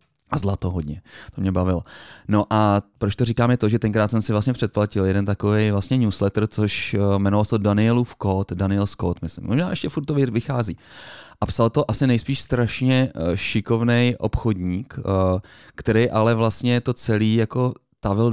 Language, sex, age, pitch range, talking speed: Czech, male, 30-49, 100-120 Hz, 165 wpm